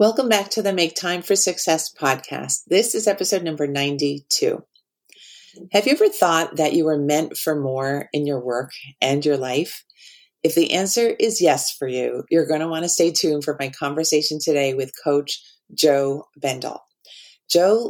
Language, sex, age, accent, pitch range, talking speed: English, female, 40-59, American, 140-180 Hz, 180 wpm